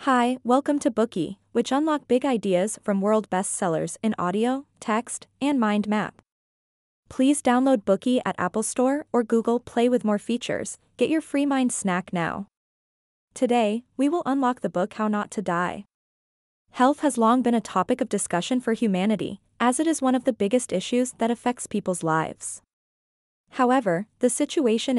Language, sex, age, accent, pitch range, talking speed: German, female, 20-39, American, 205-255 Hz, 170 wpm